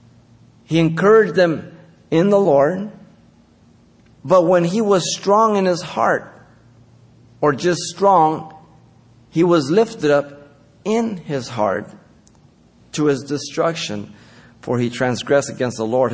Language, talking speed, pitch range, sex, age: English, 125 wpm, 120-170 Hz, male, 50-69